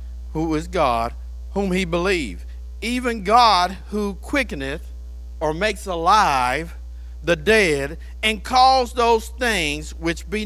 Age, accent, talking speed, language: 50-69, American, 120 wpm, English